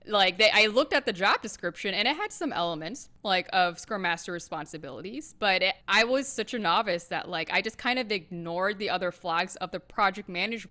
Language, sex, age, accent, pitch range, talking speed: English, female, 20-39, American, 180-235 Hz, 220 wpm